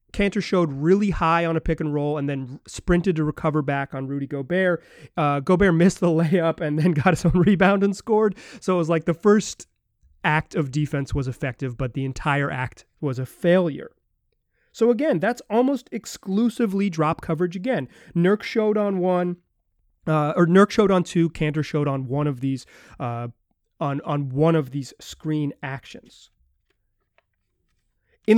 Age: 30-49